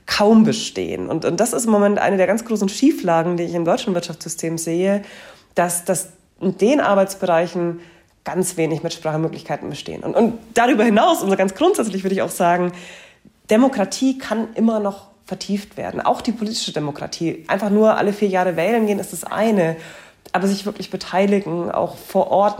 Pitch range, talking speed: 175-210 Hz, 175 wpm